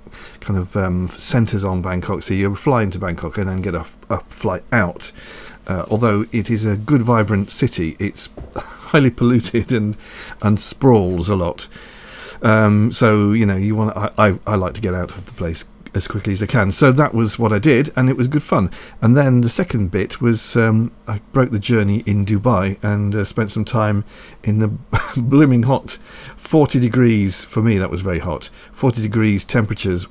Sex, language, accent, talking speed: male, English, British, 200 wpm